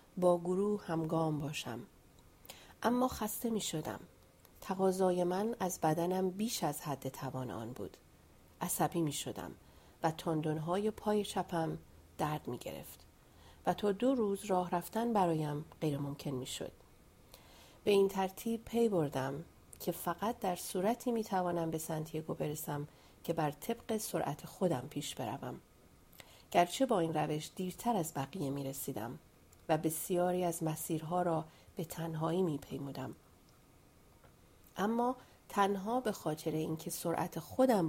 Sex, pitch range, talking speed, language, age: female, 145-190 Hz, 135 wpm, Persian, 40-59